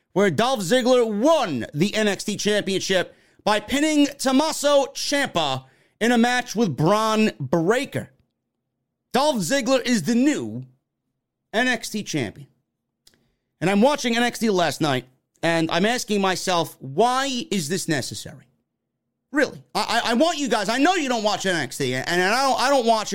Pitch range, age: 155-230 Hz, 30-49